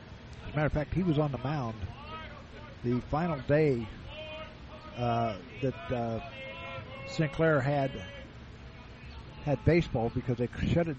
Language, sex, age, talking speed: English, male, 50-69, 130 wpm